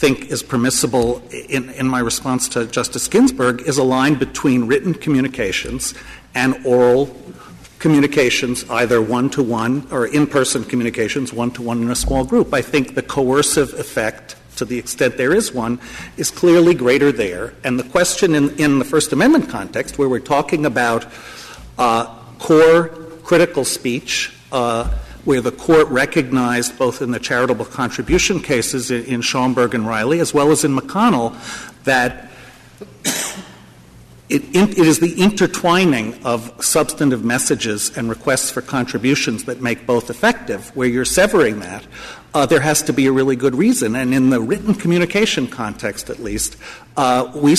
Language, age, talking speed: English, 50-69, 150 wpm